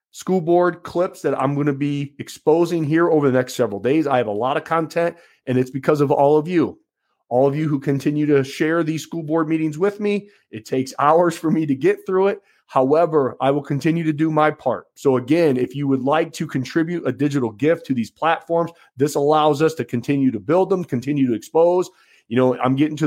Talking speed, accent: 230 wpm, American